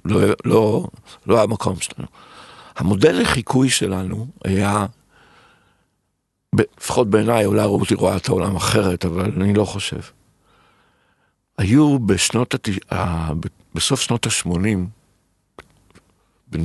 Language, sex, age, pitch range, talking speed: Hebrew, male, 60-79, 95-125 Hz, 110 wpm